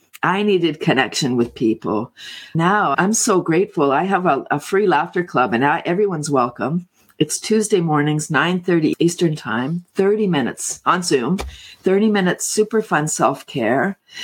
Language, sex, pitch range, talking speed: English, female, 145-190 Hz, 145 wpm